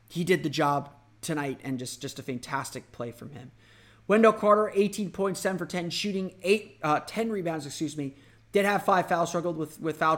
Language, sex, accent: English, male, American